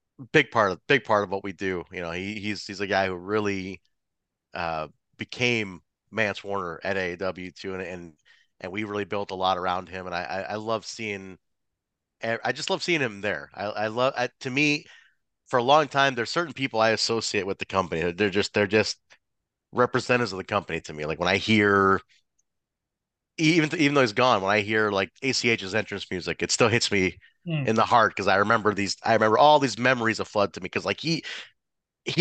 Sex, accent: male, American